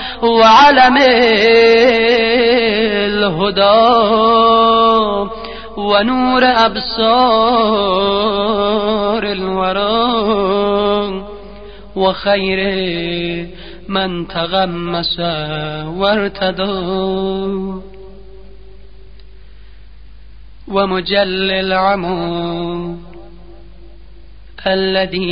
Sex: male